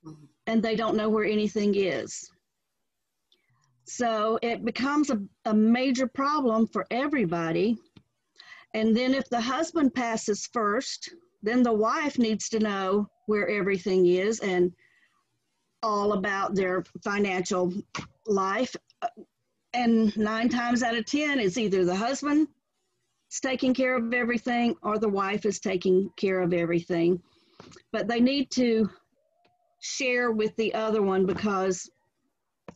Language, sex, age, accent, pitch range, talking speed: English, female, 40-59, American, 190-240 Hz, 130 wpm